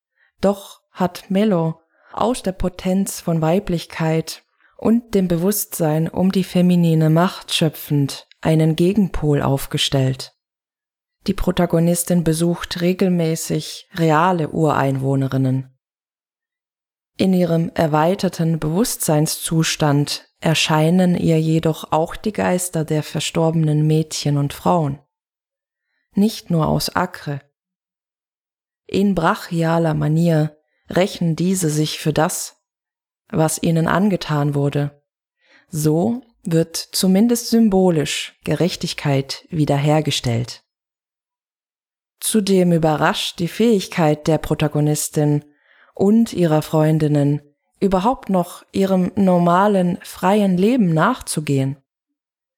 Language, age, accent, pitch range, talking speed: German, 20-39, German, 155-190 Hz, 90 wpm